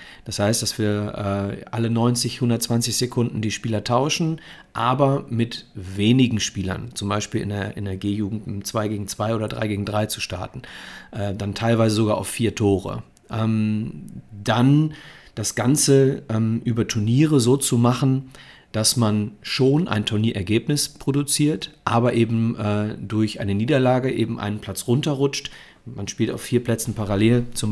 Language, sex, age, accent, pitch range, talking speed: German, male, 40-59, German, 105-130 Hz, 160 wpm